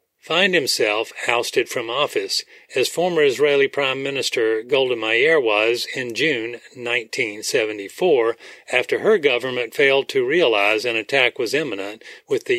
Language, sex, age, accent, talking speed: English, male, 40-59, American, 135 wpm